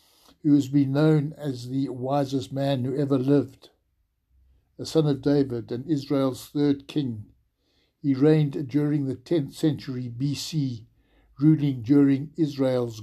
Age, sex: 60-79, male